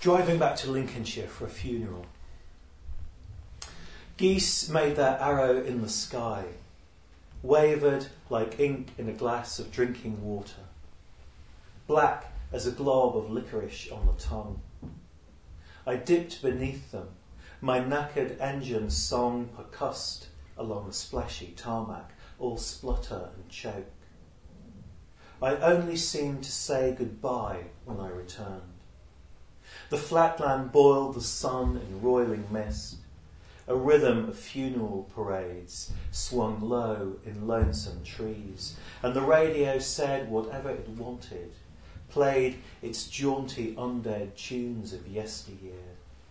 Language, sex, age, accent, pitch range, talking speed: English, male, 40-59, British, 90-125 Hz, 115 wpm